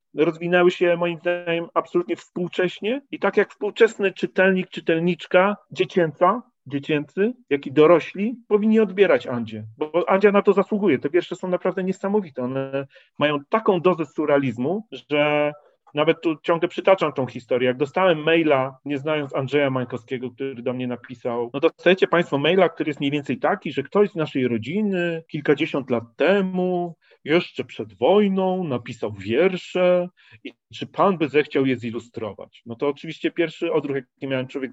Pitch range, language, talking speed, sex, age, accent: 135-180 Hz, Polish, 155 wpm, male, 40-59, native